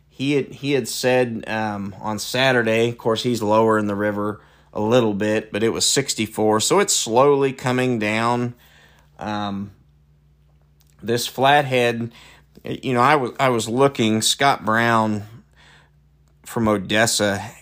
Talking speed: 140 wpm